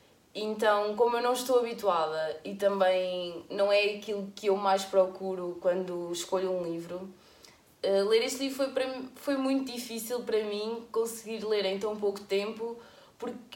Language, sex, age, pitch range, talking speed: English, female, 20-39, 195-235 Hz, 155 wpm